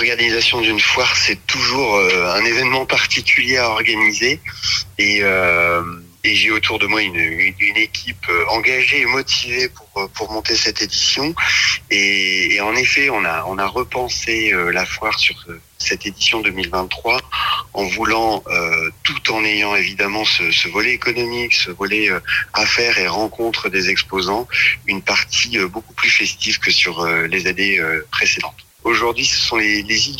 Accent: French